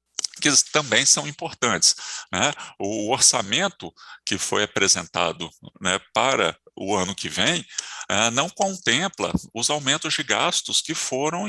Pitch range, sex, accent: 95-160 Hz, male, Brazilian